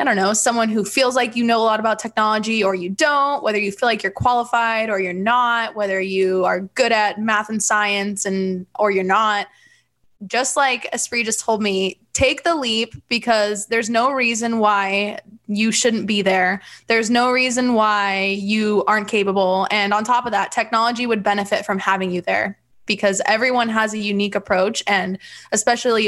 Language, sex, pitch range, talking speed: English, female, 195-230 Hz, 190 wpm